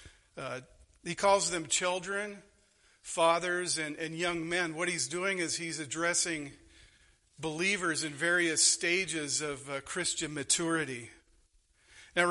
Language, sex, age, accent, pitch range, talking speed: English, male, 50-69, American, 140-175 Hz, 120 wpm